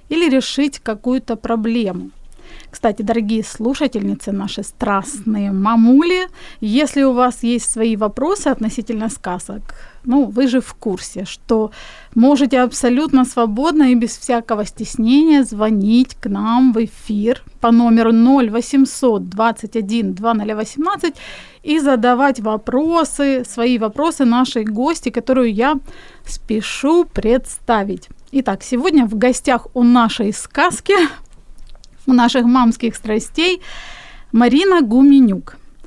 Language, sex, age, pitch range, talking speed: Ukrainian, female, 30-49, 225-270 Hz, 105 wpm